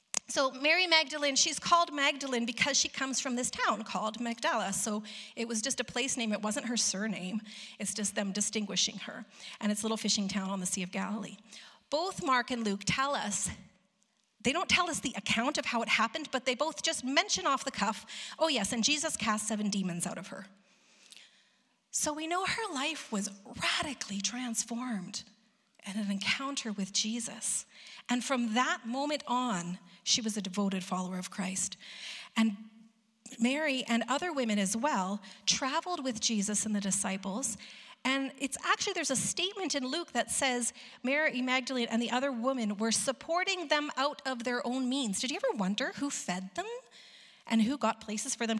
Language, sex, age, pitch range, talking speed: English, female, 40-59, 210-275 Hz, 185 wpm